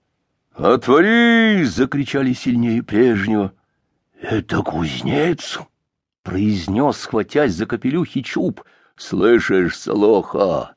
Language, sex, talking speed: English, male, 100 wpm